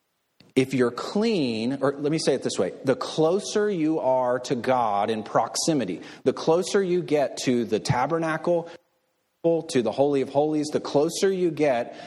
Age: 30-49